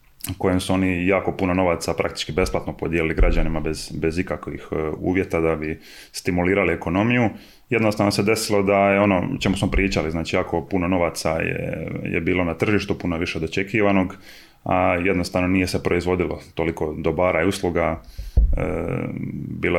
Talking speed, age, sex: 150 wpm, 20-39, male